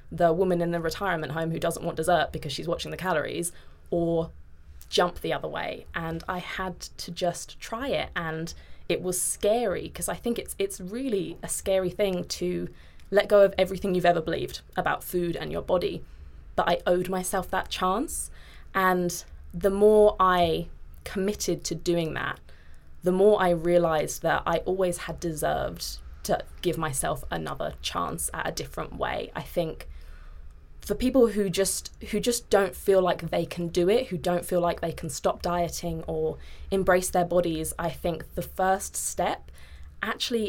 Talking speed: 175 wpm